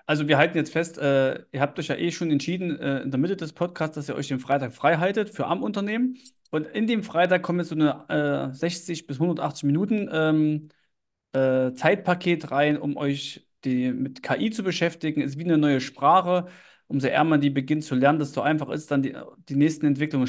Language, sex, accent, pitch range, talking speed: German, male, German, 140-165 Hz, 215 wpm